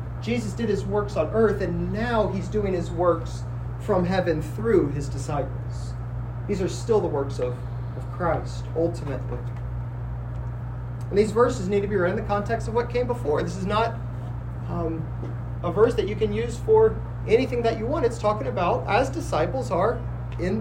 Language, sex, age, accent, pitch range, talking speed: English, male, 30-49, American, 120-130 Hz, 180 wpm